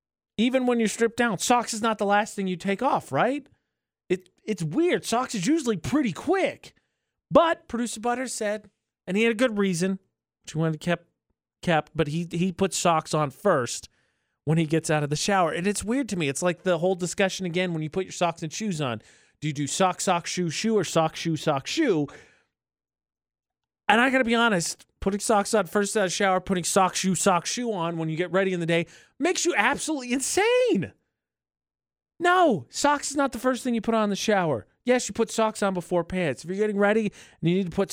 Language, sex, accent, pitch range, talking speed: English, male, American, 180-240 Hz, 225 wpm